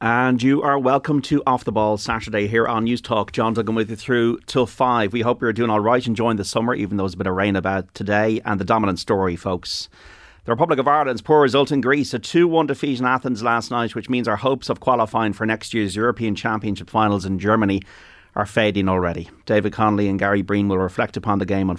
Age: 40-59